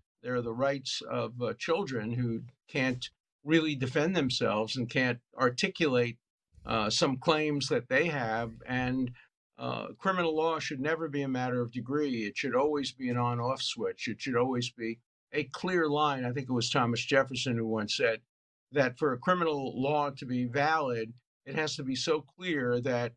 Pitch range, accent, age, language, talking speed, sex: 125-160 Hz, American, 50-69, English, 180 wpm, male